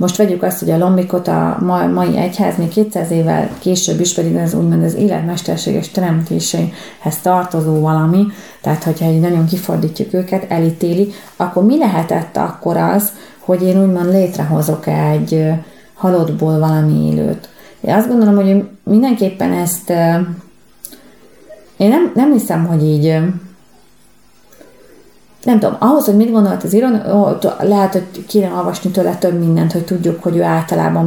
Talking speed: 140 wpm